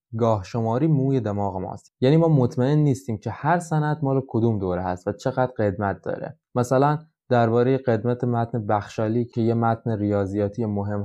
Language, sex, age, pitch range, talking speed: Persian, male, 20-39, 105-135 Hz, 165 wpm